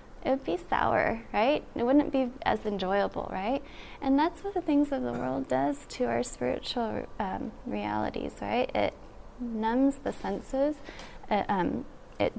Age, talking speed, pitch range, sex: 20-39, 155 wpm, 220-275 Hz, female